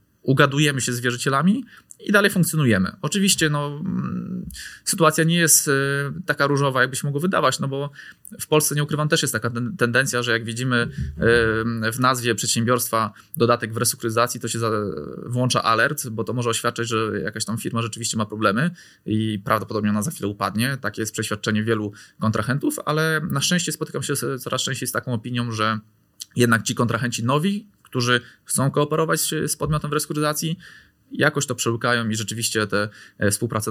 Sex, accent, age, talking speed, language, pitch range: male, native, 20-39, 160 wpm, Polish, 110-140 Hz